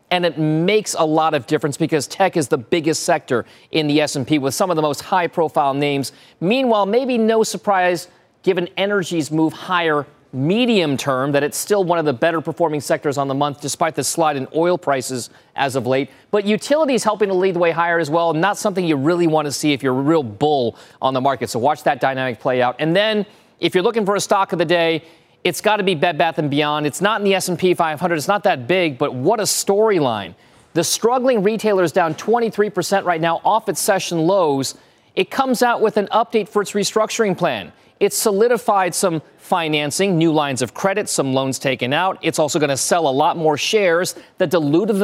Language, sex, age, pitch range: English, male, 40-59, 150-200 Hz